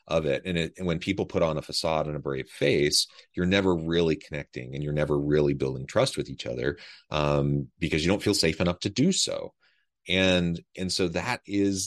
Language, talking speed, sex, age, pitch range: English, 210 wpm, male, 30-49, 75-95 Hz